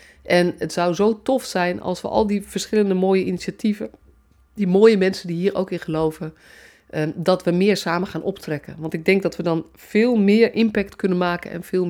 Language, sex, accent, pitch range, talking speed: Dutch, female, Dutch, 165-205 Hz, 200 wpm